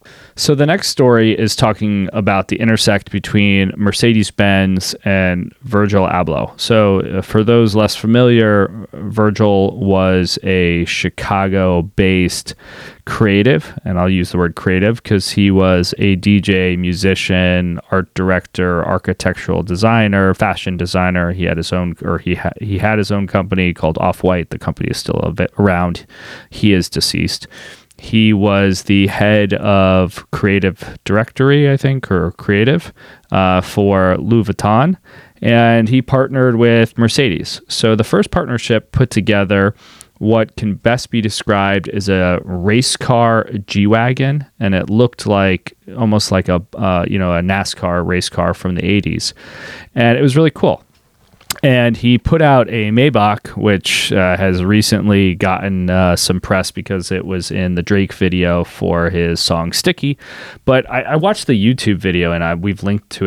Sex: male